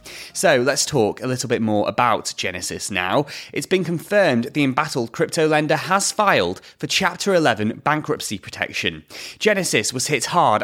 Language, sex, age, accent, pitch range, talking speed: English, male, 30-49, British, 130-180 Hz, 160 wpm